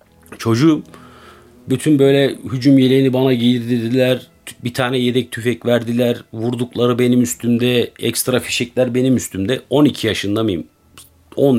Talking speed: 120 wpm